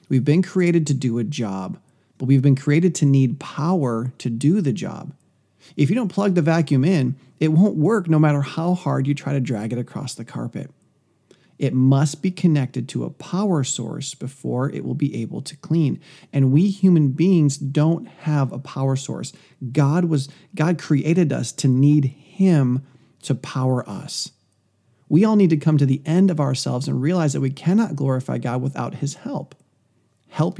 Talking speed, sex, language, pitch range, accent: 190 wpm, male, English, 130-165 Hz, American